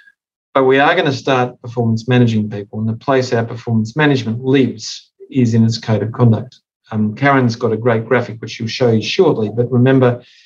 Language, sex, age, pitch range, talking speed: English, male, 40-59, 120-140 Hz, 200 wpm